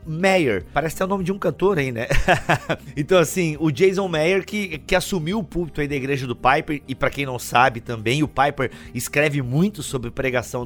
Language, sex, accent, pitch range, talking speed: Portuguese, male, Brazilian, 130-190 Hz, 210 wpm